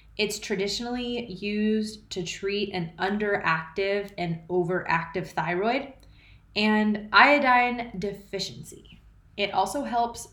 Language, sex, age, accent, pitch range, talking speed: English, female, 20-39, American, 170-210 Hz, 95 wpm